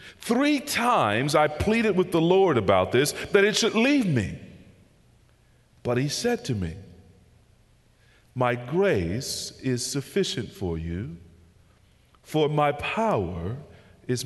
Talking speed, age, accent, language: 120 wpm, 40-59, American, English